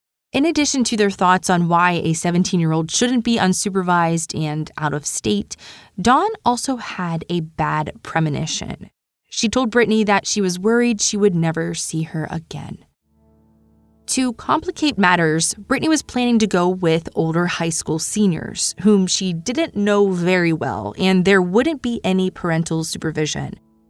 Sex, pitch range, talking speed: female, 160-210 Hz, 155 wpm